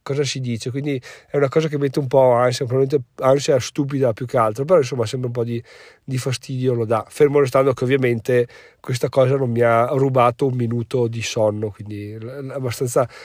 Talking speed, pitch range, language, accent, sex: 200 wpm, 120-145 Hz, Italian, native, male